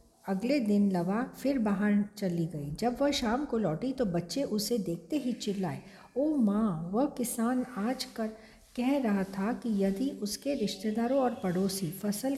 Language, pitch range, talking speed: Hindi, 190-240 Hz, 165 wpm